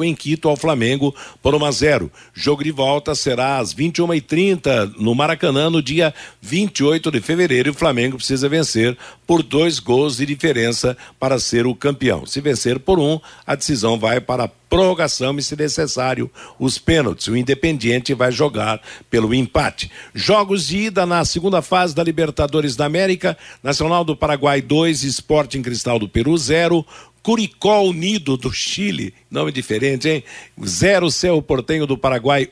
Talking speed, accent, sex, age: 160 wpm, Brazilian, male, 60-79